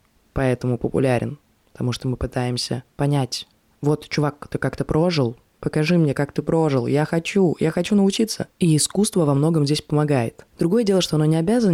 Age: 20-39